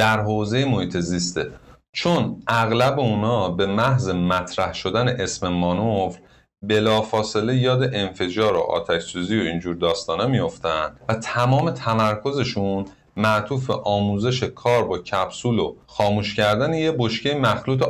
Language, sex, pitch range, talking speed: Persian, male, 100-130 Hz, 115 wpm